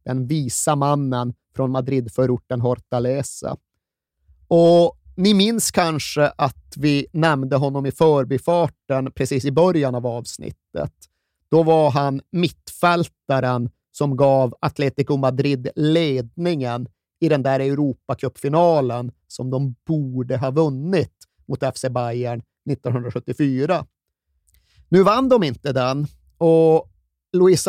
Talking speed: 110 wpm